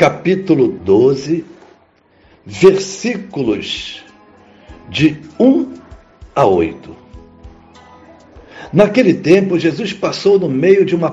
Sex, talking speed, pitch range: male, 80 wpm, 140-195 Hz